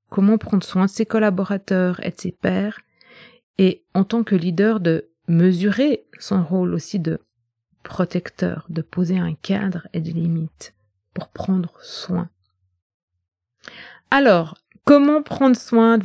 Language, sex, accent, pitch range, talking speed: French, female, French, 175-230 Hz, 140 wpm